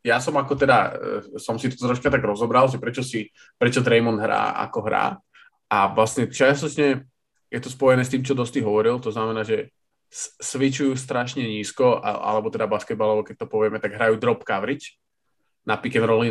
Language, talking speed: Slovak, 170 wpm